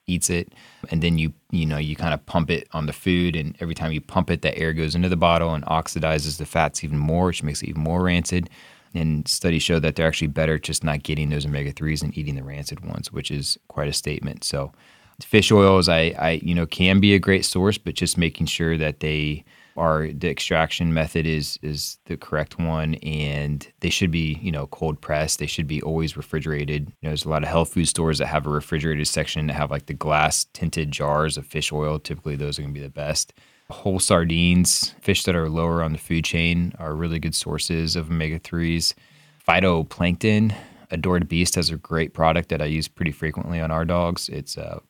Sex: male